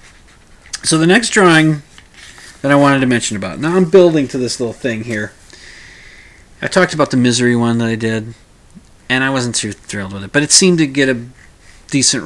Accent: American